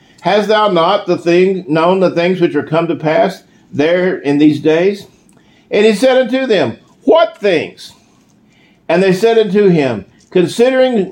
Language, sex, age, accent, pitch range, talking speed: English, male, 50-69, American, 155-205 Hz, 160 wpm